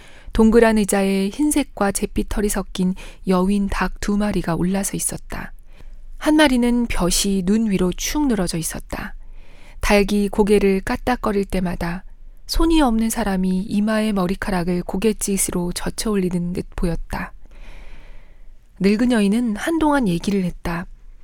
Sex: female